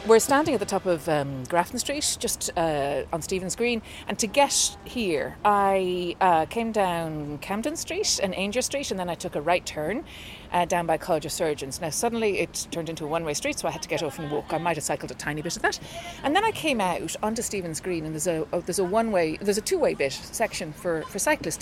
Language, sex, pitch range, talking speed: English, female, 175-230 Hz, 245 wpm